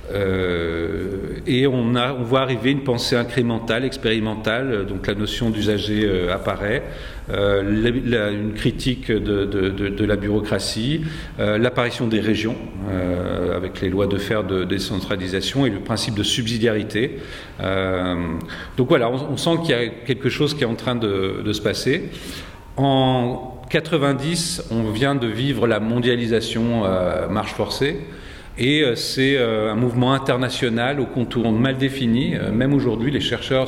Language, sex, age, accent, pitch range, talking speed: French, male, 40-59, French, 100-125 Hz, 155 wpm